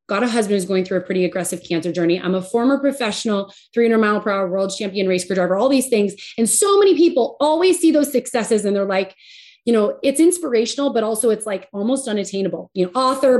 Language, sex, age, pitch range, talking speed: English, female, 30-49, 190-255 Hz, 230 wpm